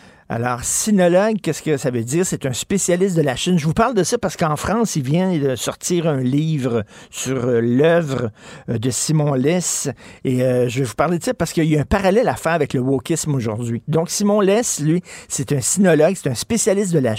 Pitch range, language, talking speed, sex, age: 135-175 Hz, French, 230 wpm, male, 50-69